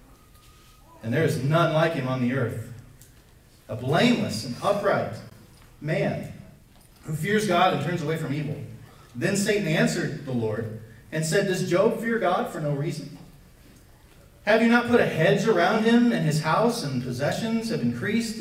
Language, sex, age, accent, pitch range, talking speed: English, male, 30-49, American, 125-195 Hz, 165 wpm